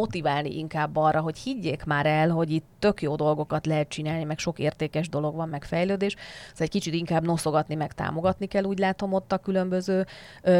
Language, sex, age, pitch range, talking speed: Hungarian, female, 30-49, 150-175 Hz, 200 wpm